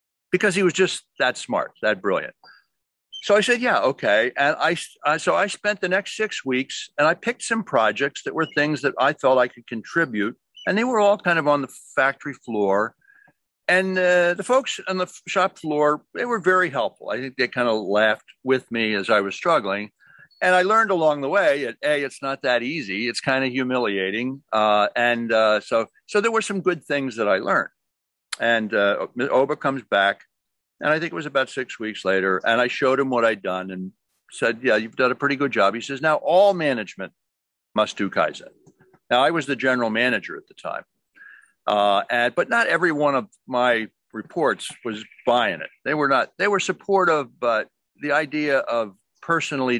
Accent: American